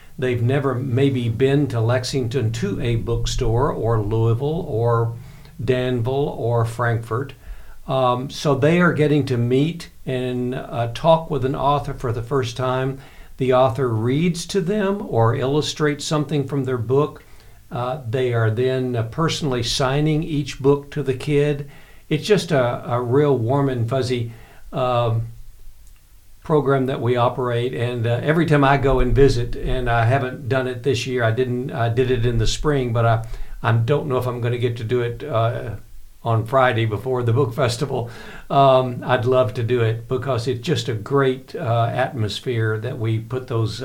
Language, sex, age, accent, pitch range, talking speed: English, male, 60-79, American, 115-140 Hz, 175 wpm